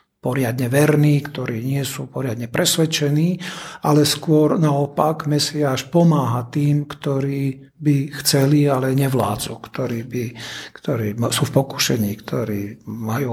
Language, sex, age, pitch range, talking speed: Slovak, male, 50-69, 130-155 Hz, 115 wpm